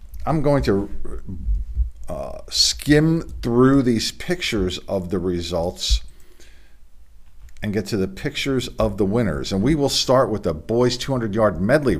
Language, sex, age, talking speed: English, male, 50-69, 145 wpm